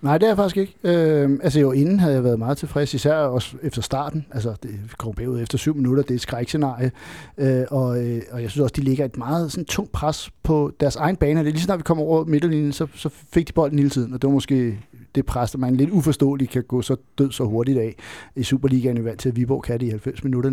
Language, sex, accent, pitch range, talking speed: Danish, male, native, 125-155 Hz, 255 wpm